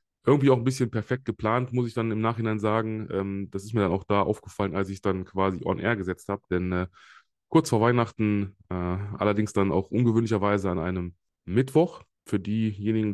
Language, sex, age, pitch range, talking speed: German, male, 20-39, 95-110 Hz, 190 wpm